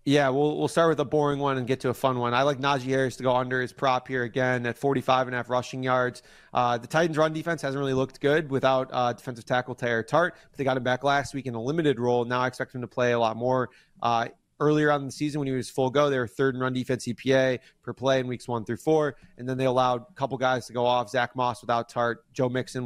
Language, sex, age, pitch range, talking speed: English, male, 30-49, 120-140 Hz, 285 wpm